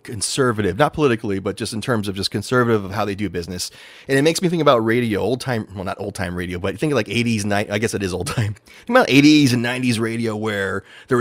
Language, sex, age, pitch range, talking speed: English, male, 30-49, 100-125 Hz, 260 wpm